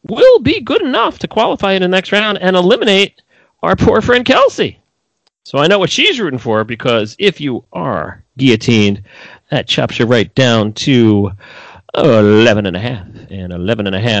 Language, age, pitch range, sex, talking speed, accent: English, 40-59, 110-165 Hz, male, 160 wpm, American